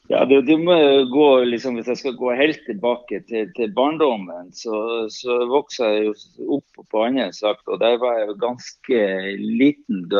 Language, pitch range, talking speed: English, 110-140 Hz, 170 wpm